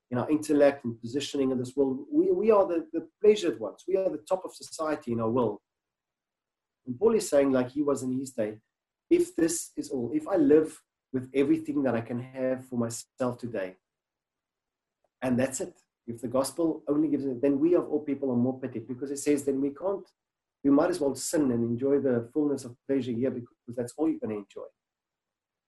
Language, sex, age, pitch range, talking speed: English, male, 40-59, 120-150 Hz, 215 wpm